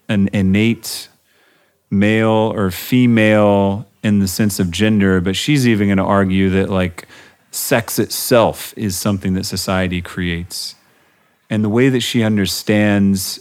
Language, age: English, 30-49